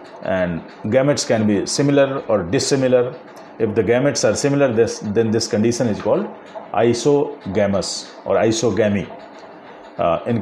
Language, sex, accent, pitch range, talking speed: Hindi, male, native, 105-130 Hz, 130 wpm